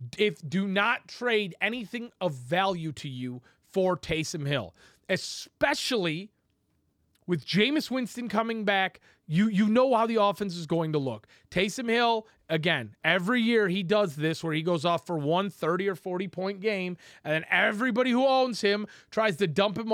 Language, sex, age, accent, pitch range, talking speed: English, male, 30-49, American, 150-215 Hz, 170 wpm